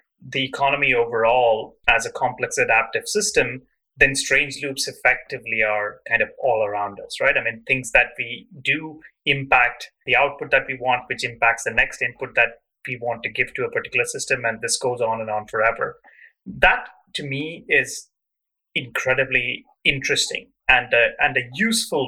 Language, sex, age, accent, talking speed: English, male, 30-49, Indian, 170 wpm